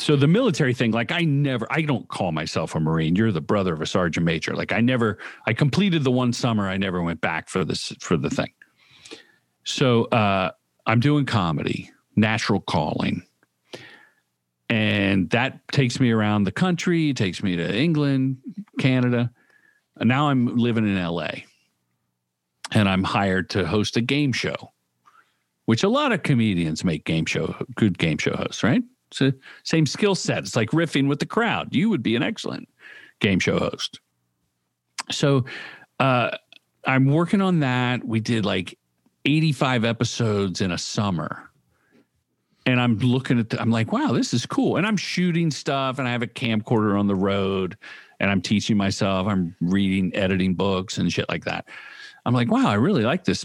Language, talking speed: English, 175 wpm